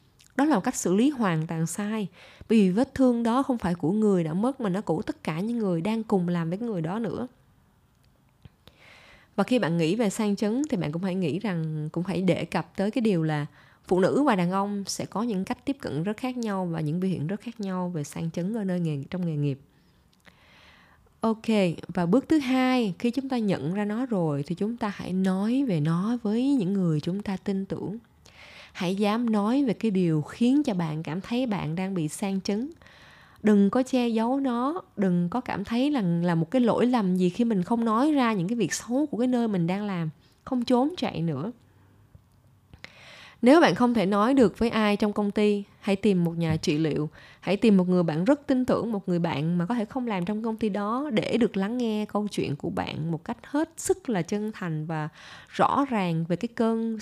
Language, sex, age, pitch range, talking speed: Vietnamese, female, 20-39, 170-235 Hz, 230 wpm